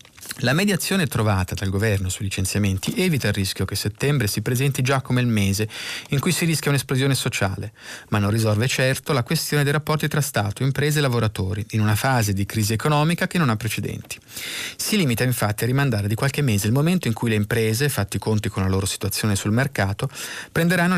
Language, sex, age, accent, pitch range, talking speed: Italian, male, 30-49, native, 105-140 Hz, 200 wpm